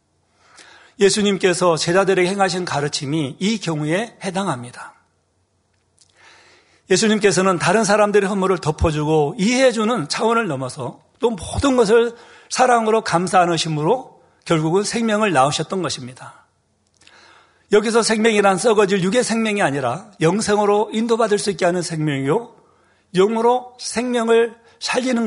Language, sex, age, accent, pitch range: Korean, male, 40-59, native, 150-215 Hz